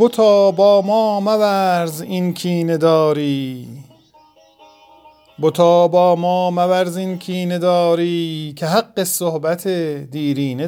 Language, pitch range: Persian, 145-185 Hz